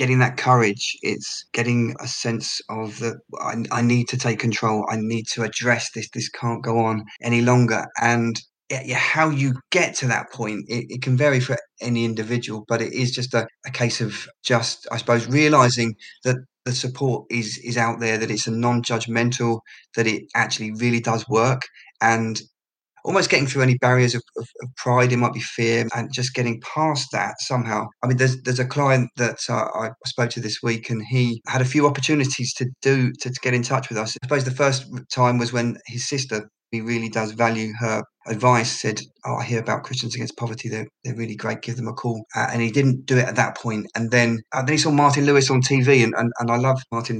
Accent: British